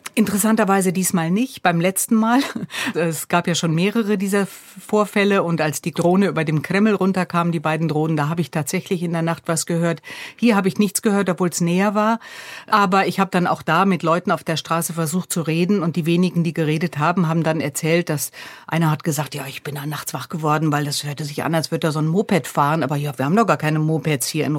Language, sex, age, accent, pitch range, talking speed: German, female, 50-69, German, 155-190 Hz, 240 wpm